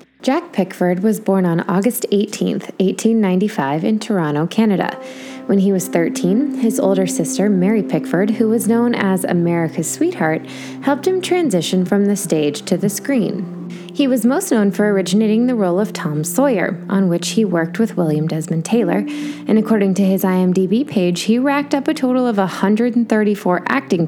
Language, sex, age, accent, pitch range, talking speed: English, female, 20-39, American, 175-235 Hz, 170 wpm